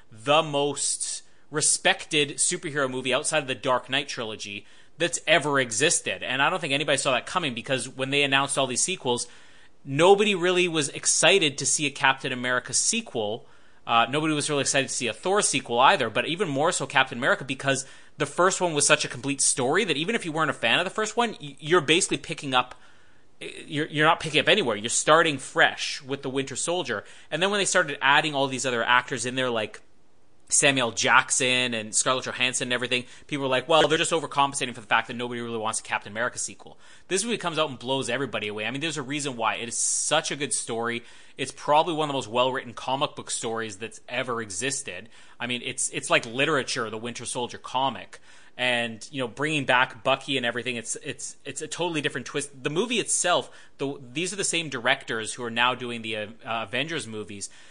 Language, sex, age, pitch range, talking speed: English, male, 30-49, 120-150 Hz, 215 wpm